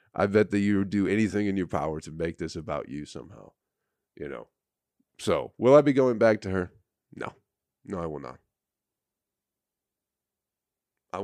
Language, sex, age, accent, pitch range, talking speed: English, male, 40-59, American, 80-100 Hz, 170 wpm